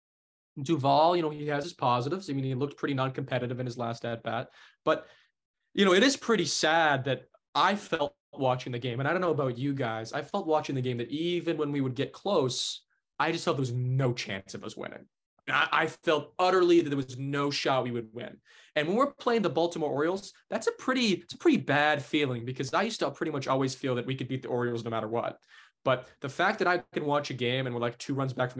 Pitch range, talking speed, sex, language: 120-155 Hz, 250 wpm, male, English